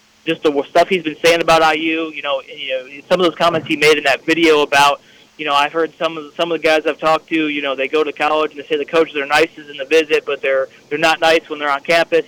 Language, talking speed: English, 305 wpm